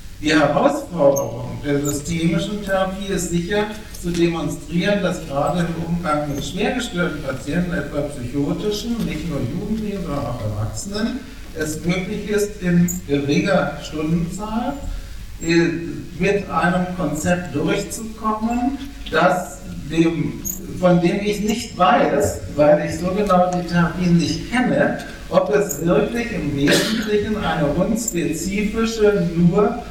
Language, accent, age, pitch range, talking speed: German, German, 60-79, 150-190 Hz, 115 wpm